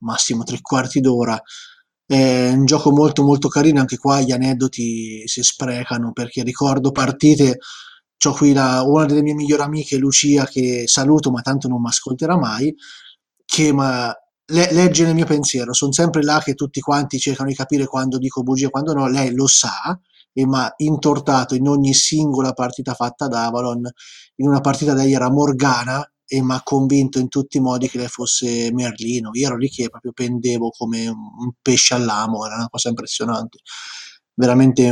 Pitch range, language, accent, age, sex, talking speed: 120-140 Hz, Italian, native, 20-39, male, 180 wpm